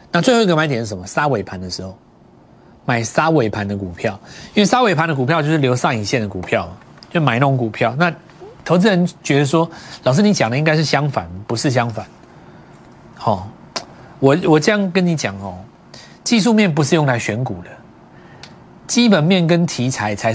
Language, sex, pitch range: Chinese, male, 110-170 Hz